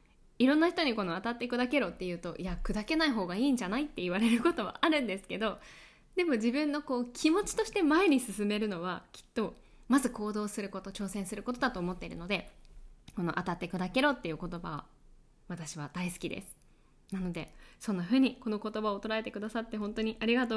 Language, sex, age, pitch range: Japanese, female, 20-39, 190-285 Hz